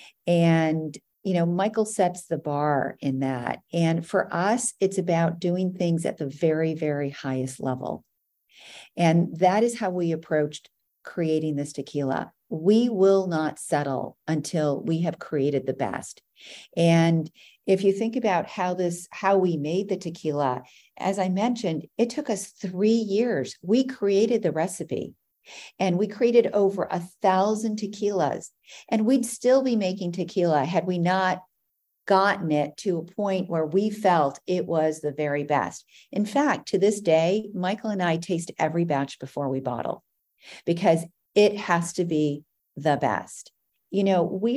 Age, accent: 50-69, American